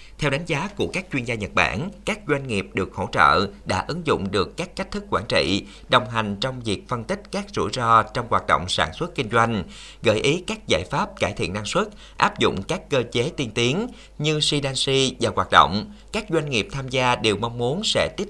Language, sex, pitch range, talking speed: Vietnamese, male, 110-155 Hz, 235 wpm